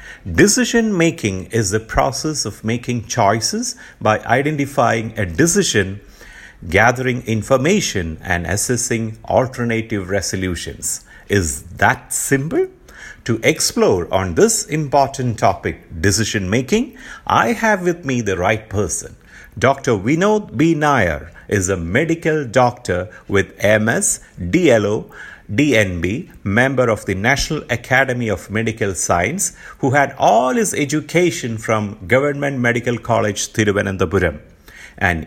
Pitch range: 100-145 Hz